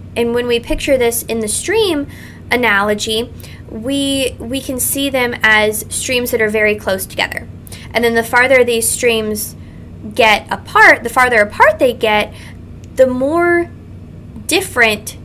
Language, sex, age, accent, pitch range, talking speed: English, female, 10-29, American, 210-270 Hz, 145 wpm